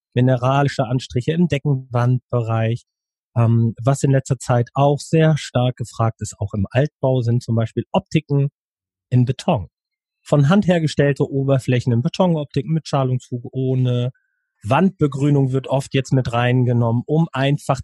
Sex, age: male, 30-49